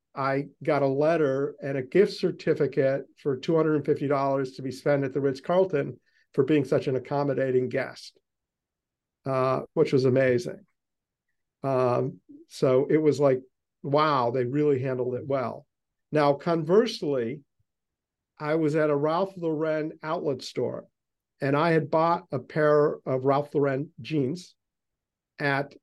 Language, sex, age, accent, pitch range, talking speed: English, male, 50-69, American, 135-160 Hz, 135 wpm